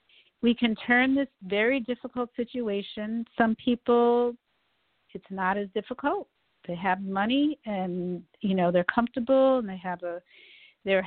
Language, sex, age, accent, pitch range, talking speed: English, female, 50-69, American, 185-225 Hz, 140 wpm